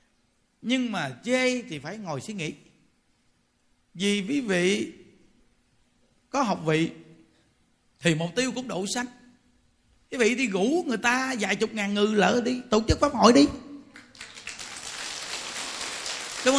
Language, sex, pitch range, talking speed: Vietnamese, male, 185-250 Hz, 140 wpm